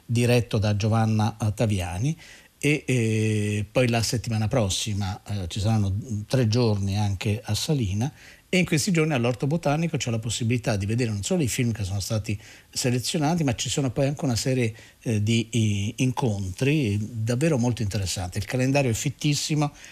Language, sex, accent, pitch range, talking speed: Italian, male, native, 105-130 Hz, 165 wpm